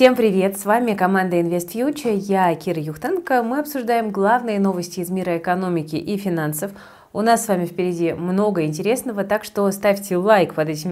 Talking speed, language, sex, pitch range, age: 170 wpm, Russian, female, 160-210 Hz, 30-49